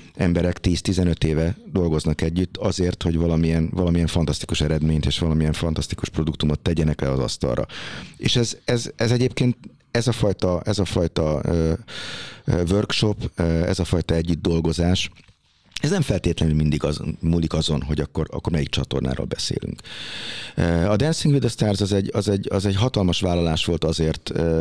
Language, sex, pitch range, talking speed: Hungarian, male, 80-100 Hz, 140 wpm